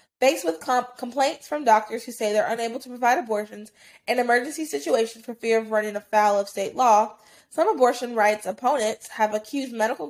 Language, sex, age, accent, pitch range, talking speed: English, female, 20-39, American, 215-255 Hz, 185 wpm